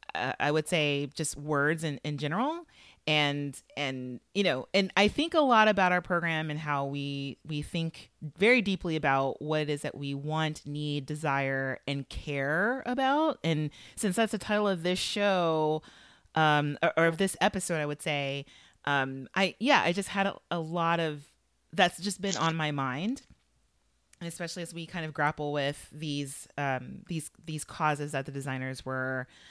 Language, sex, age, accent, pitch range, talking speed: English, female, 30-49, American, 140-195 Hz, 180 wpm